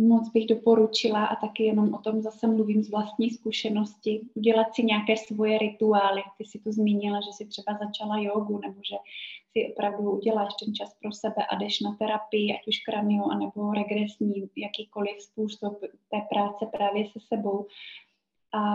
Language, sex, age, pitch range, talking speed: Czech, female, 20-39, 210-220 Hz, 170 wpm